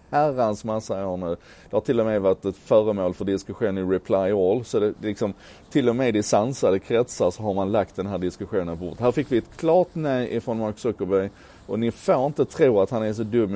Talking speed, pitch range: 225 wpm, 95-115 Hz